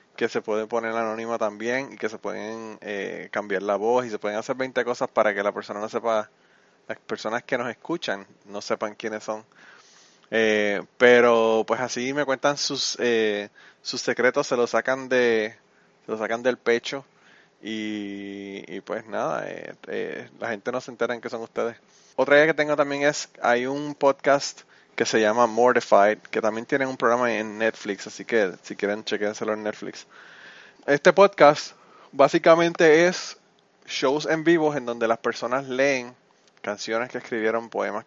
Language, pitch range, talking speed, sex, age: Spanish, 110-130 Hz, 175 wpm, male, 20-39